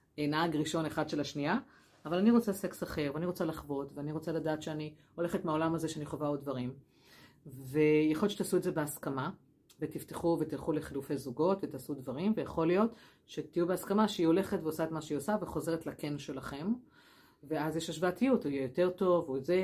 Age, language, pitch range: 30-49, Hebrew, 145-180 Hz